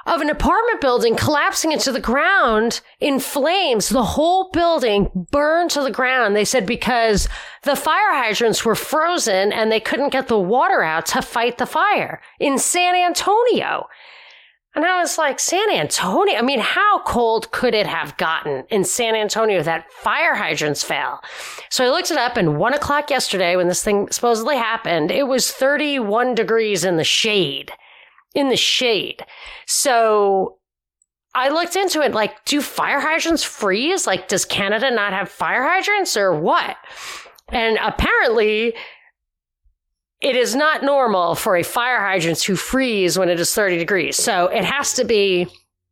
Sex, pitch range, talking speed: female, 190-280 Hz, 165 wpm